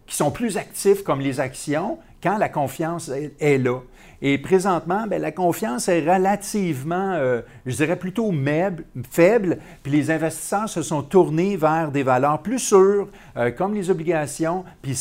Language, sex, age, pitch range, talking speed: French, male, 50-69, 130-170 Hz, 165 wpm